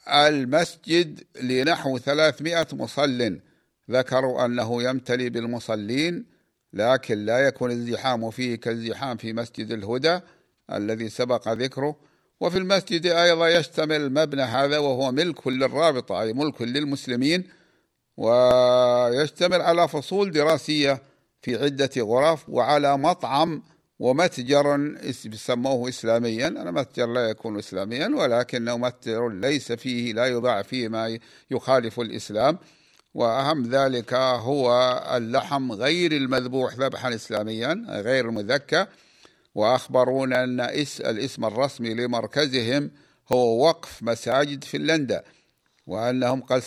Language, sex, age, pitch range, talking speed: Arabic, male, 50-69, 120-145 Hz, 105 wpm